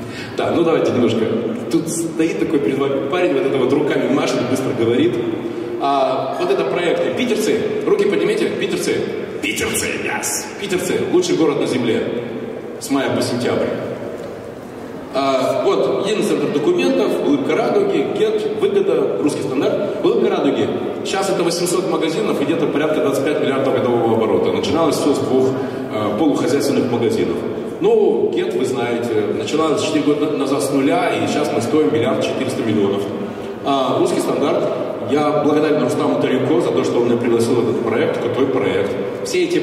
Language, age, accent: Russian, 20-39, native